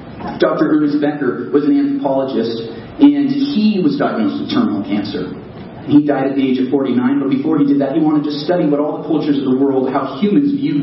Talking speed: 215 wpm